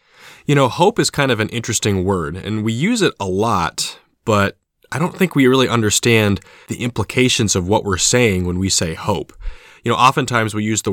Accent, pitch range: American, 95-125 Hz